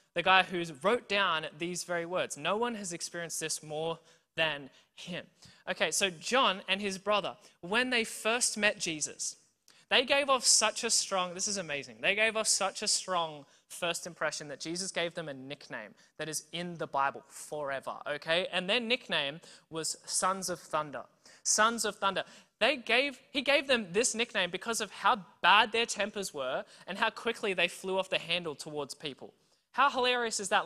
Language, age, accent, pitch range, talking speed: English, 20-39, Australian, 175-235 Hz, 185 wpm